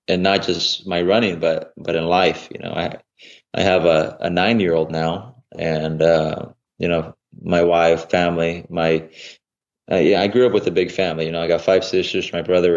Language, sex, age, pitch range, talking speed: English, male, 20-39, 85-95 Hz, 210 wpm